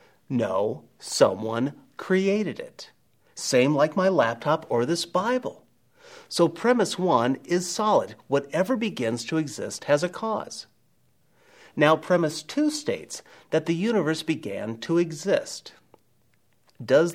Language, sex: English, male